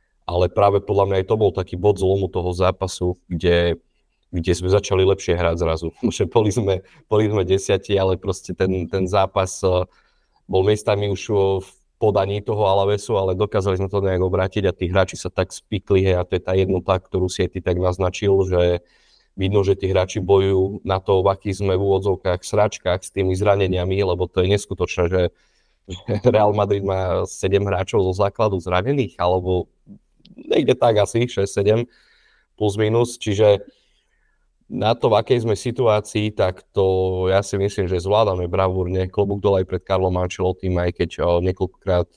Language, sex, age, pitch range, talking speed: Slovak, male, 30-49, 90-100 Hz, 170 wpm